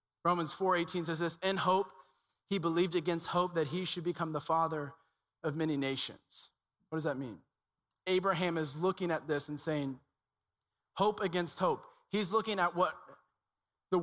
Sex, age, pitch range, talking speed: male, 20-39, 165-205 Hz, 165 wpm